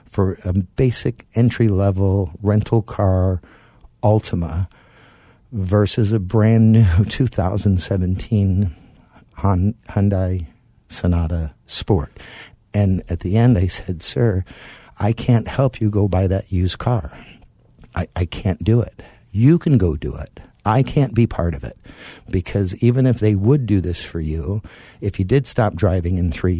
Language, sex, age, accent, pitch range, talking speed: English, male, 50-69, American, 95-115 Hz, 140 wpm